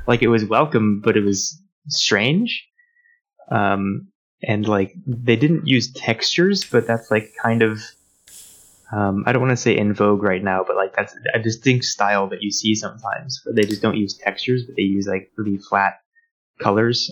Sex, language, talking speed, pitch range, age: male, English, 185 wpm, 100-120 Hz, 20-39